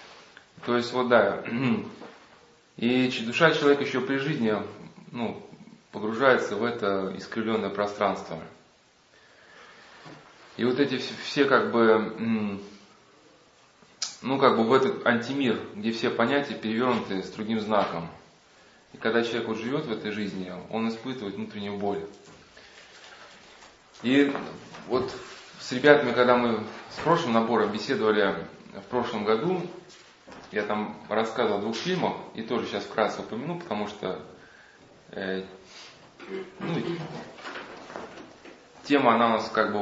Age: 20-39